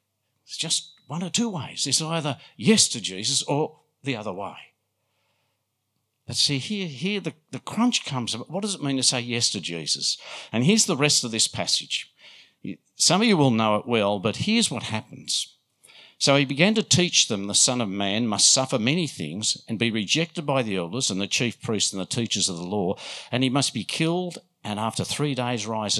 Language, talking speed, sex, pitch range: English, 210 wpm, male, 115-185 Hz